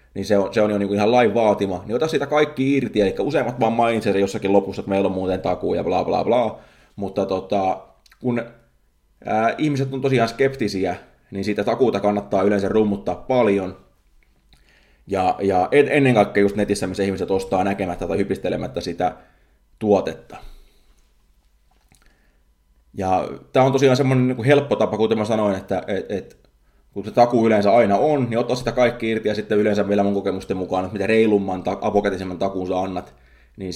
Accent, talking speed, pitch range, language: native, 175 wpm, 90-115 Hz, Finnish